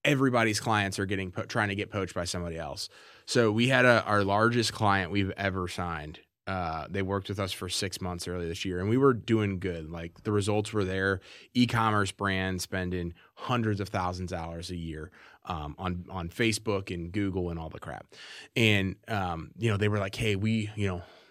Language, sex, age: English, male, 20-39